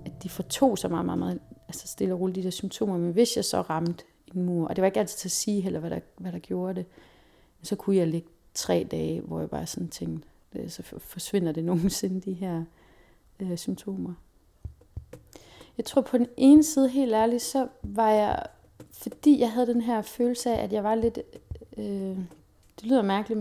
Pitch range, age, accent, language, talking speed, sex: 185-240 Hz, 30-49, native, Danish, 210 wpm, female